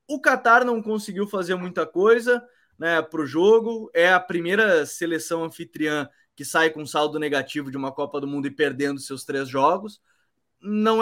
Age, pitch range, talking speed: 20-39, 135-175 Hz, 180 wpm